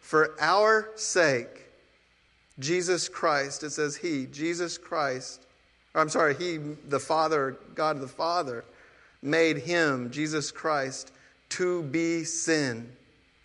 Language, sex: English, male